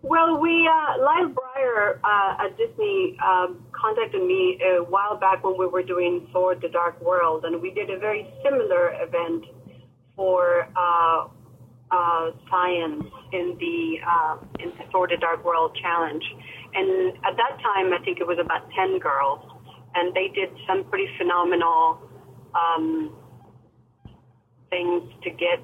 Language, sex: English, female